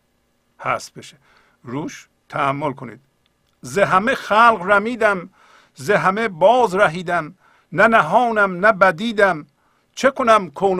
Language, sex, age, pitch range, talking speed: Persian, male, 50-69, 135-195 Hz, 110 wpm